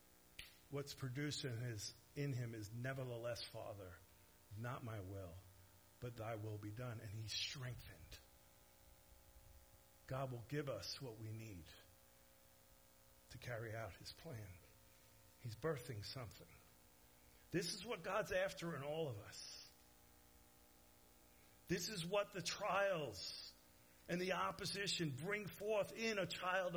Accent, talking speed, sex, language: American, 125 wpm, male, English